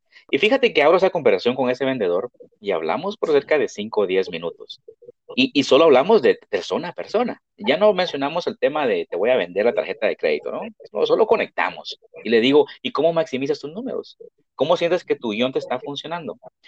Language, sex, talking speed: Spanish, male, 215 wpm